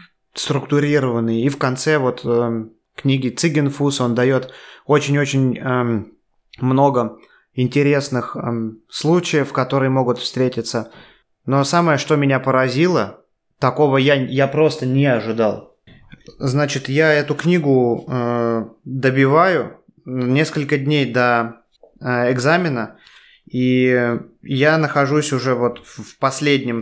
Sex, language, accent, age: male, Russian, native, 20-39